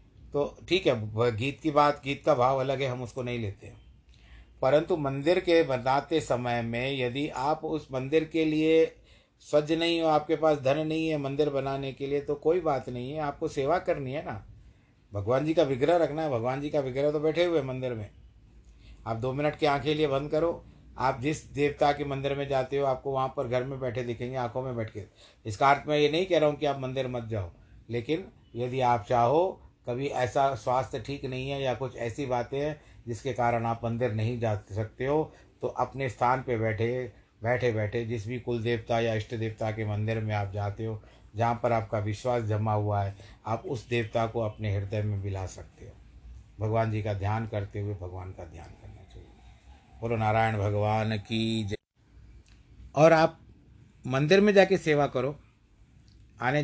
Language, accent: Hindi, native